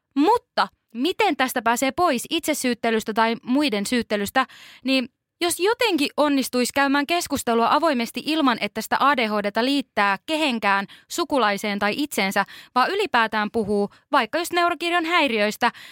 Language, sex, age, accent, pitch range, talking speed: Finnish, female, 20-39, native, 210-290 Hz, 120 wpm